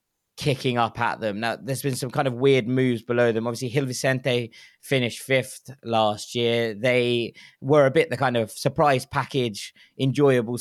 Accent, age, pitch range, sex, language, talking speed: British, 20-39, 115-140 Hz, male, English, 175 wpm